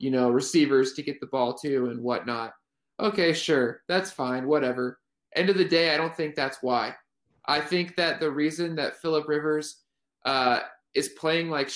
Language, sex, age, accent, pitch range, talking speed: English, male, 20-39, American, 135-170 Hz, 185 wpm